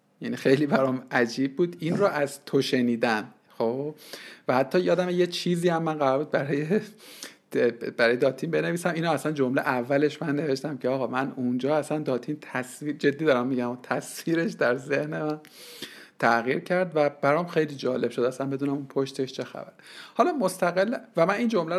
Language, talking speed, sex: Persian, 170 wpm, male